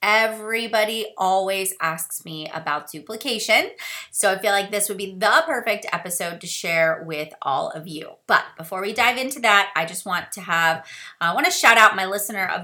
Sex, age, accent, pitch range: female, 30-49, American, 175-240 Hz